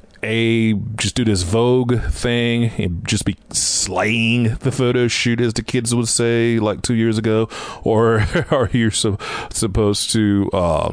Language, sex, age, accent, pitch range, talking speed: English, male, 30-49, American, 95-115 Hz, 160 wpm